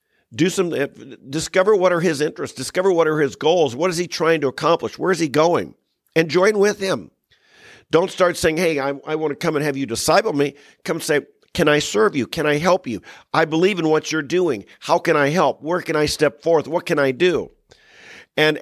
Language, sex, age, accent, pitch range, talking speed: English, male, 50-69, American, 140-180 Hz, 220 wpm